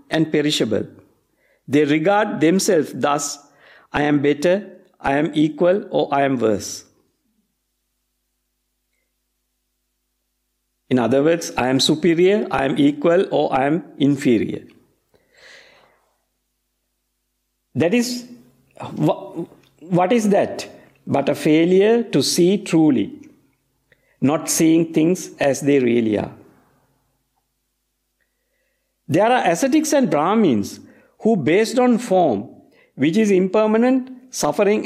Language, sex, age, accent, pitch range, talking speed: English, male, 50-69, Indian, 140-210 Hz, 105 wpm